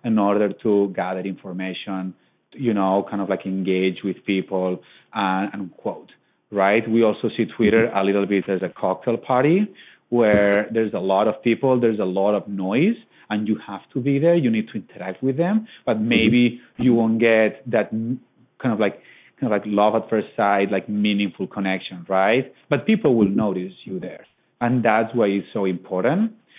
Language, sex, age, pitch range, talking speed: English, male, 30-49, 105-135 Hz, 180 wpm